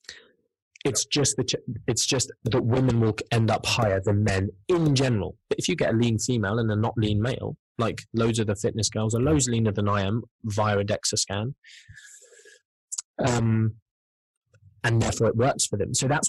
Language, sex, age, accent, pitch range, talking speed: English, male, 20-39, British, 110-145 Hz, 180 wpm